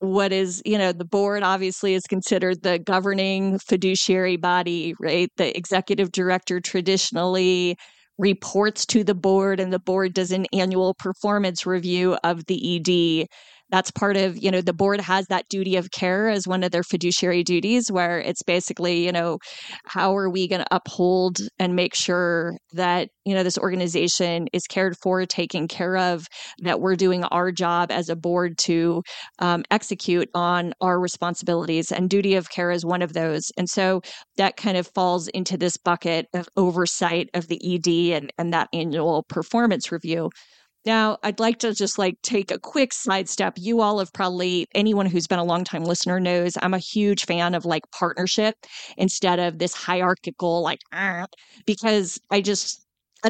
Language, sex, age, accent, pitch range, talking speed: English, female, 20-39, American, 175-195 Hz, 175 wpm